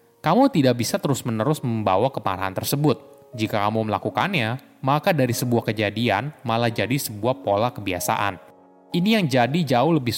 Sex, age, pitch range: male, 20-39, 110-150 Hz